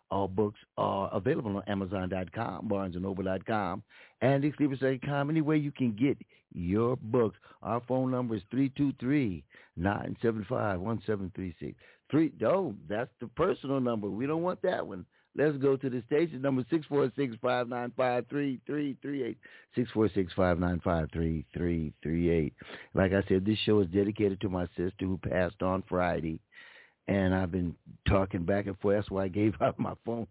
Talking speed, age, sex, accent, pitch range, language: 140 wpm, 60-79, male, American, 95-130 Hz, English